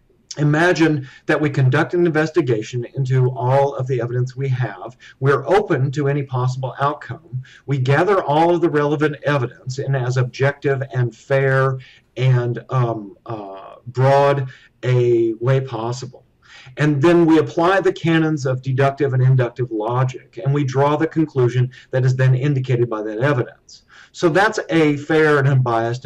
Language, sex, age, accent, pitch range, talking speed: English, male, 50-69, American, 125-155 Hz, 155 wpm